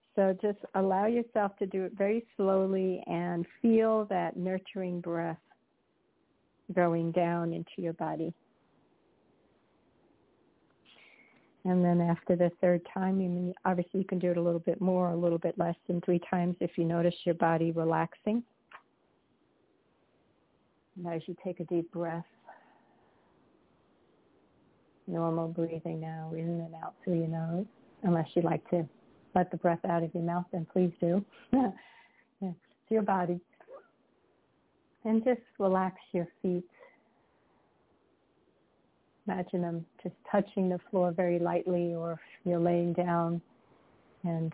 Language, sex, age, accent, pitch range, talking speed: English, female, 50-69, American, 170-190 Hz, 135 wpm